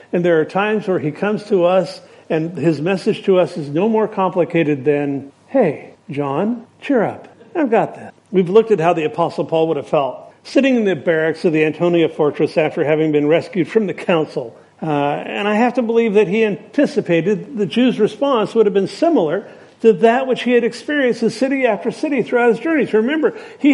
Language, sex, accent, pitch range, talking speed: English, male, American, 170-230 Hz, 205 wpm